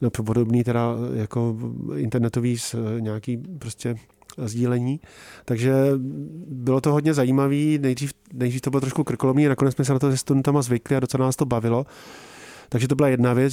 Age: 40-59